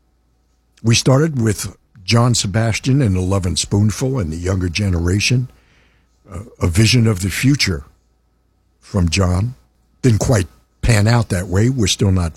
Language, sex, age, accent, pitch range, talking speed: English, male, 60-79, American, 80-110 Hz, 150 wpm